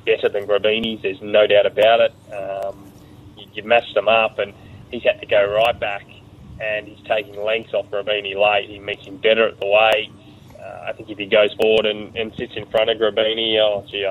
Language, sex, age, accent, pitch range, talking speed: English, male, 20-39, Australian, 105-125 Hz, 215 wpm